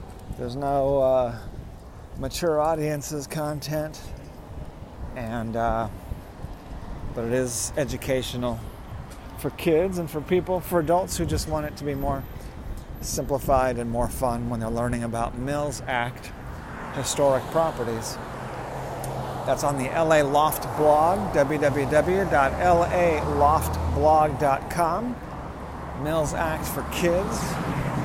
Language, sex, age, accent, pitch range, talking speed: English, male, 40-59, American, 120-155 Hz, 105 wpm